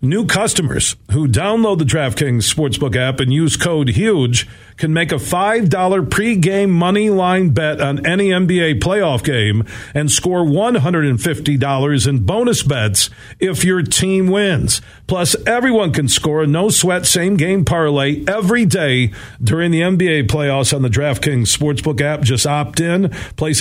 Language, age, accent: English, 50-69, American